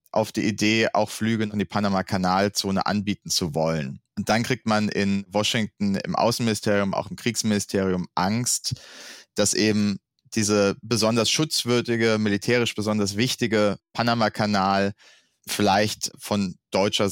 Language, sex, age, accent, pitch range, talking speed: German, male, 30-49, German, 95-110 Hz, 125 wpm